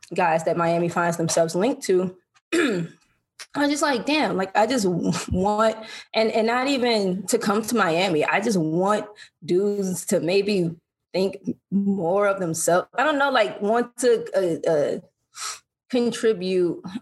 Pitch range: 170-210 Hz